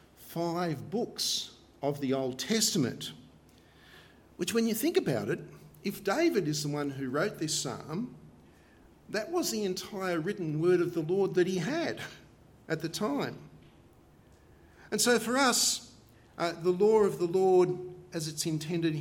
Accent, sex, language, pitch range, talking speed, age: Australian, male, English, 145-190 Hz, 155 wpm, 50-69